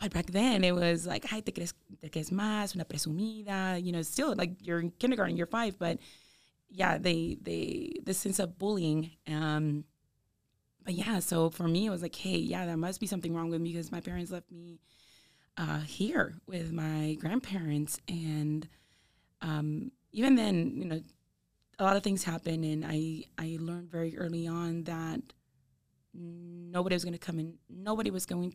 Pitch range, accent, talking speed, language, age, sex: 160-185 Hz, American, 175 wpm, English, 20-39, female